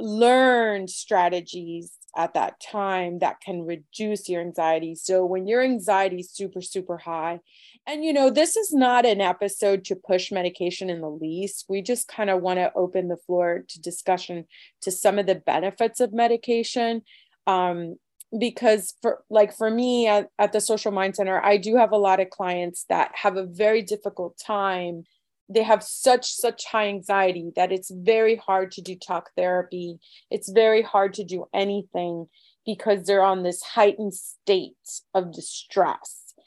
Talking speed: 170 wpm